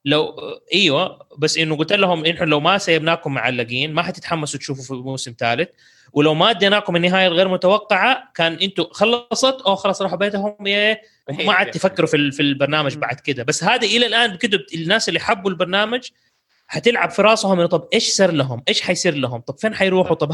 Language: English